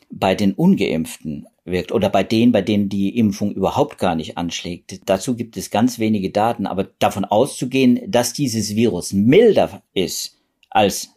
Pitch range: 100-120 Hz